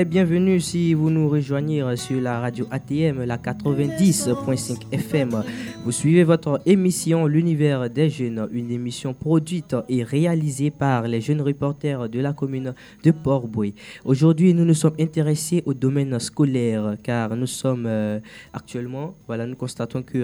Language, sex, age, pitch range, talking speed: English, male, 20-39, 115-145 Hz, 145 wpm